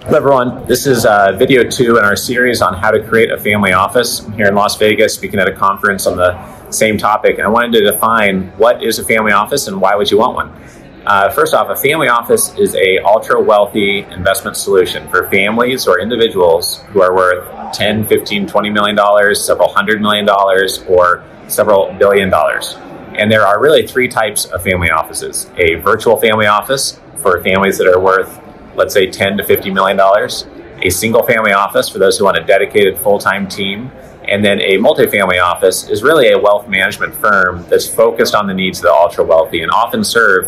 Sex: male